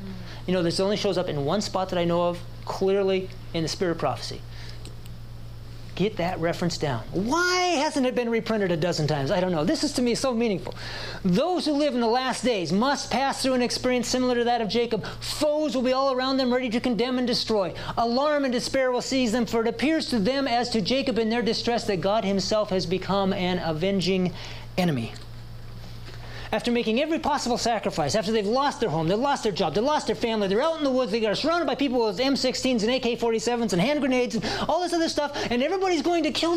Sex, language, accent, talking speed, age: male, English, American, 225 wpm, 40-59